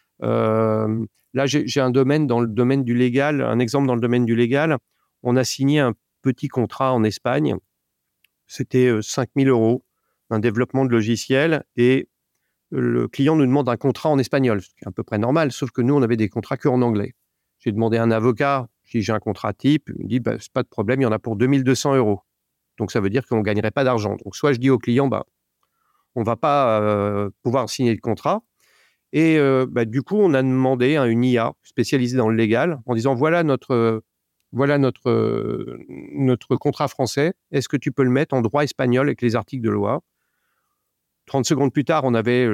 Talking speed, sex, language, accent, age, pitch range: 220 wpm, male, English, French, 40-59, 115-140 Hz